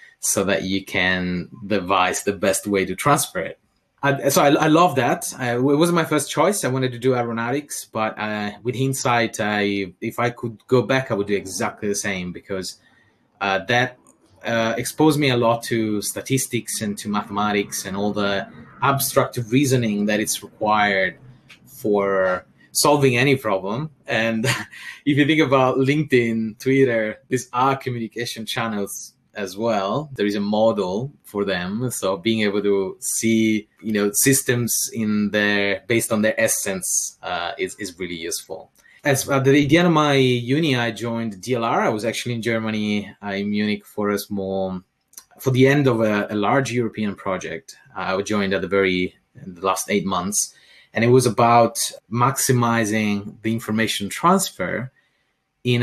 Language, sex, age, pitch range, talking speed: English, male, 30-49, 100-130 Hz, 160 wpm